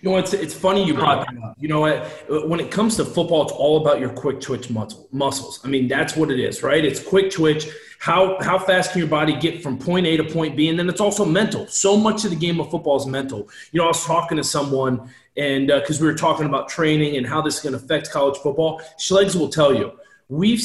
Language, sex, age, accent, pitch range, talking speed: English, male, 30-49, American, 150-185 Hz, 260 wpm